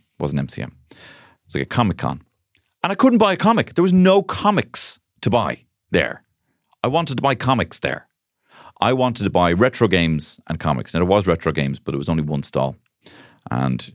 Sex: male